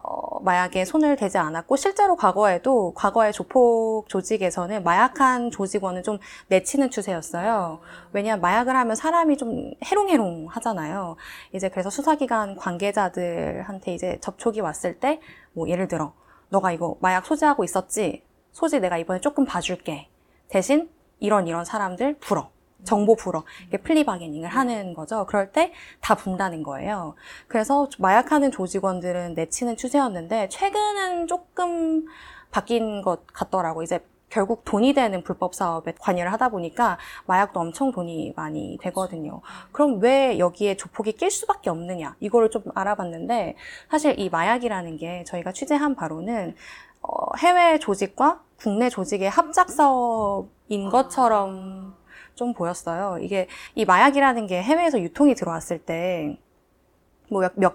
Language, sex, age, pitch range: Korean, female, 20-39, 185-270 Hz